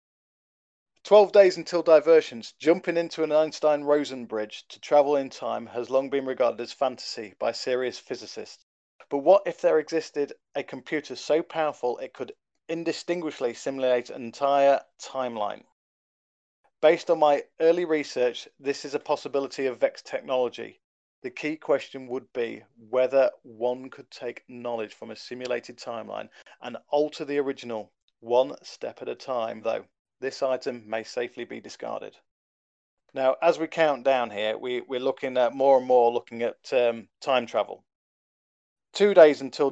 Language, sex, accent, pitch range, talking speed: English, male, British, 125-150 Hz, 150 wpm